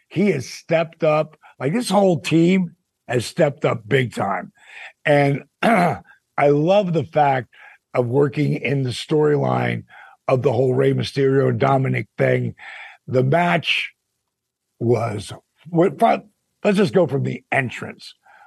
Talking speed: 135 wpm